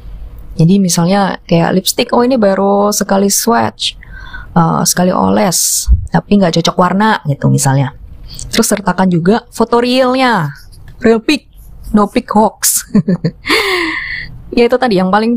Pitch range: 155-210 Hz